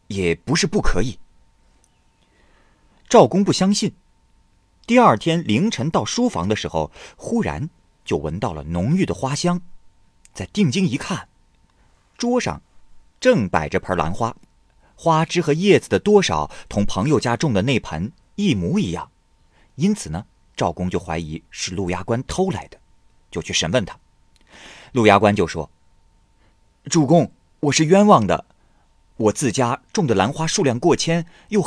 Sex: male